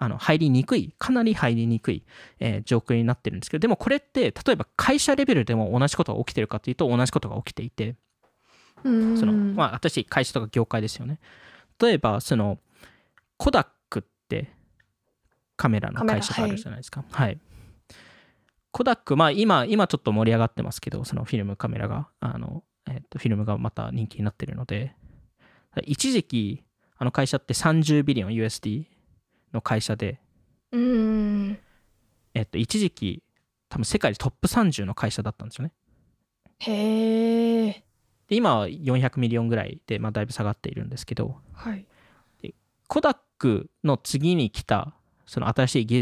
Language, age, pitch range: Japanese, 20-39, 110-175 Hz